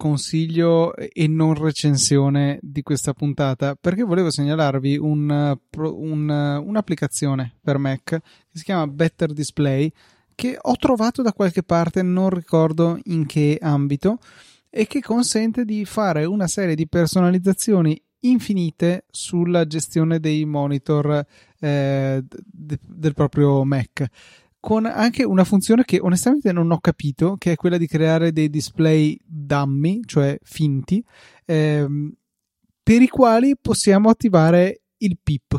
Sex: male